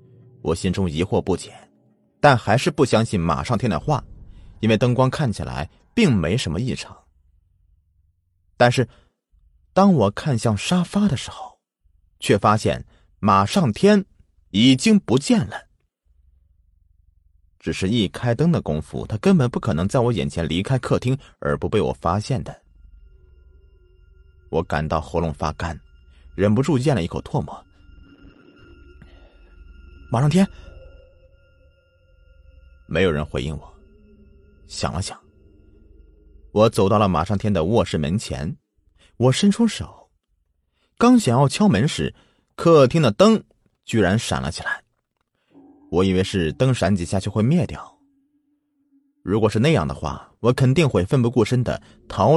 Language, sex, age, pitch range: Chinese, male, 30-49, 75-125 Hz